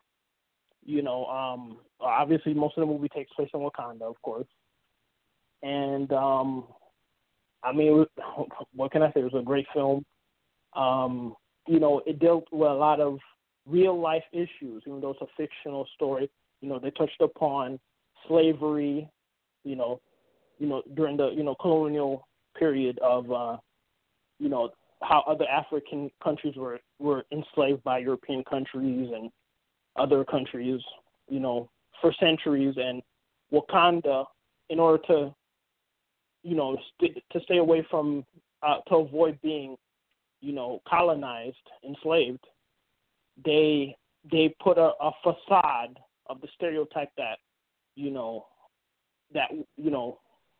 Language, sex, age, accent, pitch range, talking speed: English, male, 20-39, American, 135-155 Hz, 140 wpm